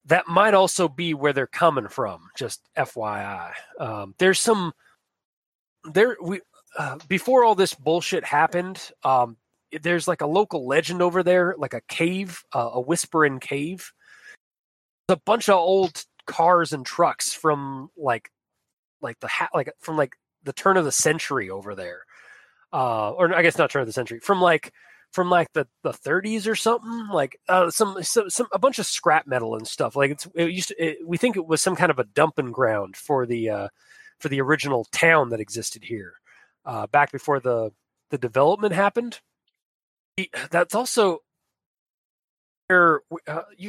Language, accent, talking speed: English, American, 175 wpm